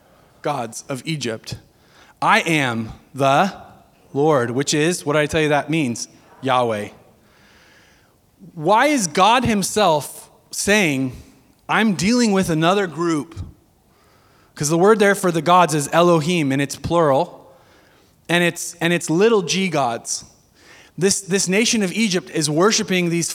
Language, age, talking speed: English, 30-49, 135 wpm